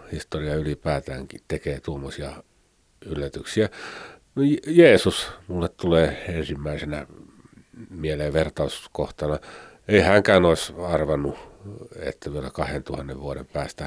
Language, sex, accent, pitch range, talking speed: Finnish, male, native, 75-110 Hz, 85 wpm